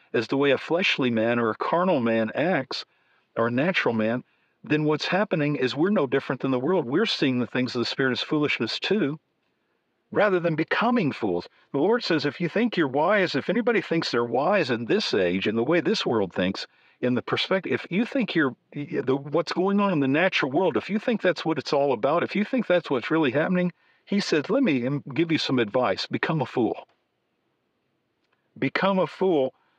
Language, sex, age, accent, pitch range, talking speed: English, male, 50-69, American, 125-180 Hz, 210 wpm